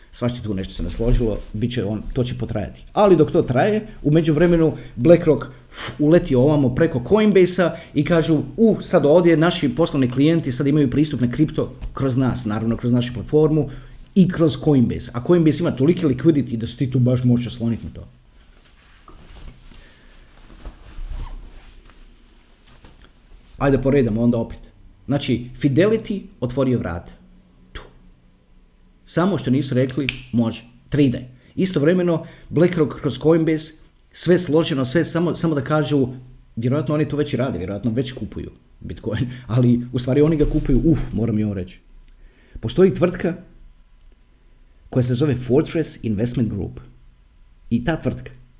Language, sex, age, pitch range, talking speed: Croatian, male, 40-59, 115-155 Hz, 145 wpm